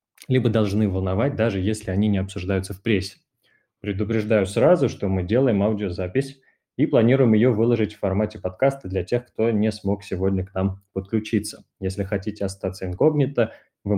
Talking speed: 160 wpm